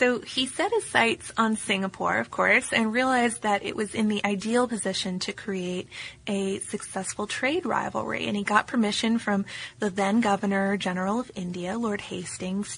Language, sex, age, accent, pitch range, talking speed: English, female, 20-39, American, 195-240 Hz, 175 wpm